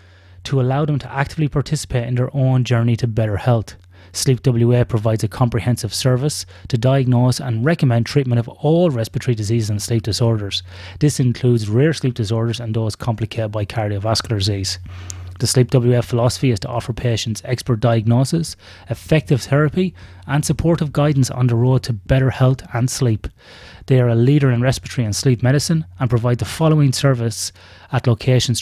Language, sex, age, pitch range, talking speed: English, male, 30-49, 110-140 Hz, 165 wpm